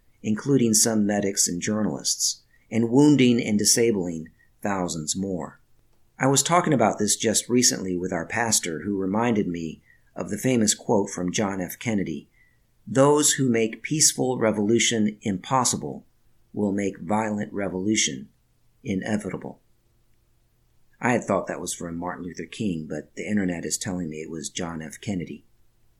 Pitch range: 95-120 Hz